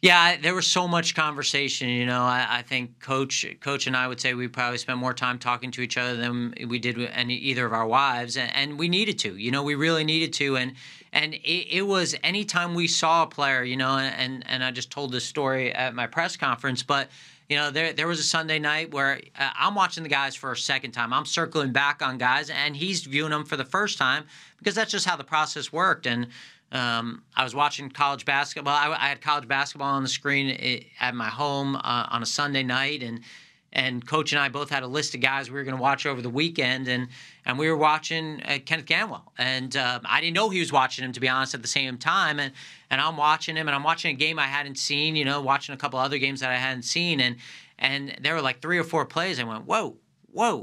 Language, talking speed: English, 250 wpm